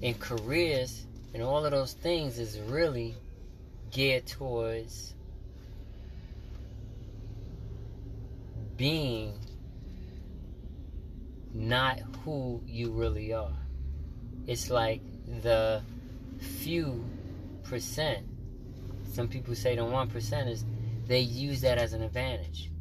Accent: American